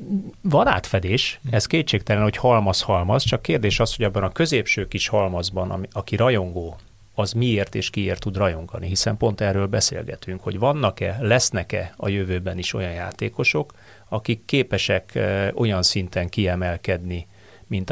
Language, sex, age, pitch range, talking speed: Hungarian, male, 30-49, 95-115 Hz, 135 wpm